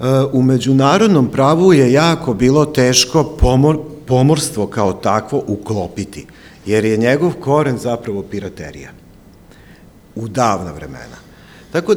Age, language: 50-69, Croatian